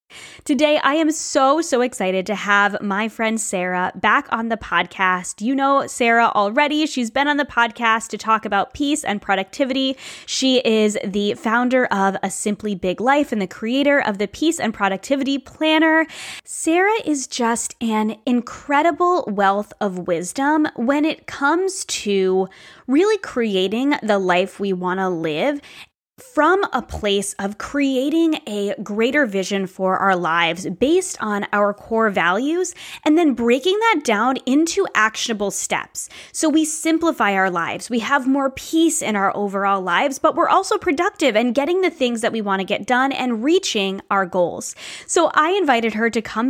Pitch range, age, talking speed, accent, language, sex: 205-305 Hz, 20-39, 165 wpm, American, English, female